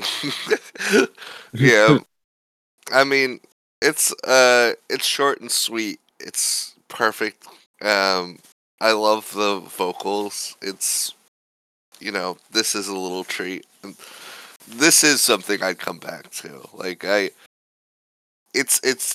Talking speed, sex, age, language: 110 wpm, male, 20-39, English